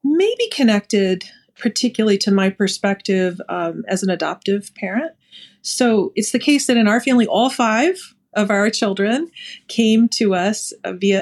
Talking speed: 150 wpm